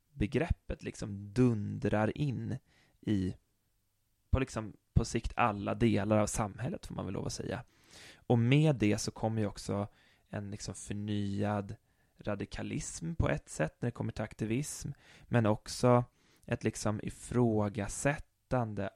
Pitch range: 100-115 Hz